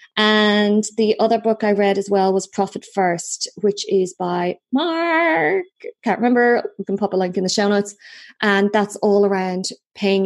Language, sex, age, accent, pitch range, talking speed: English, female, 20-39, Irish, 175-220 Hz, 180 wpm